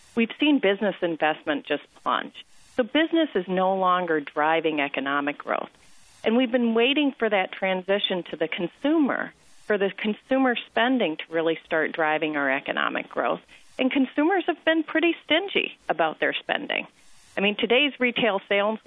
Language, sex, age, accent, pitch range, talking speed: English, female, 40-59, American, 170-230 Hz, 155 wpm